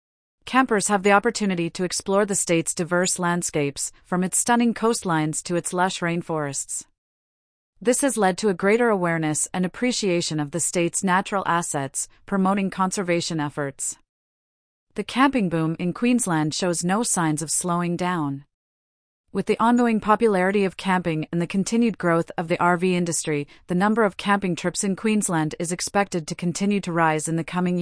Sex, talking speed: female, 165 wpm